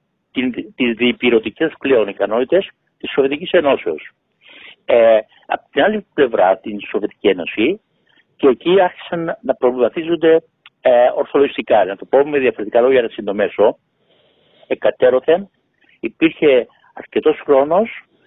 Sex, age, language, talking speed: male, 60-79, Greek, 110 wpm